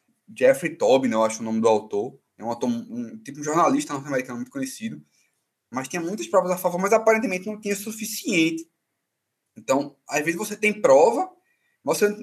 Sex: male